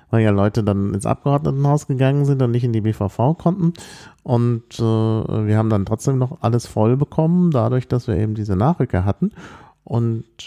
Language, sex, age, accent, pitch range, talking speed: German, male, 40-59, German, 100-135 Hz, 185 wpm